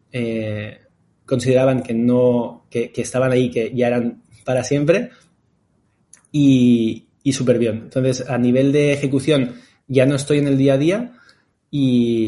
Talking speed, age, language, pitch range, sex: 150 wpm, 20-39, Spanish, 125-150 Hz, male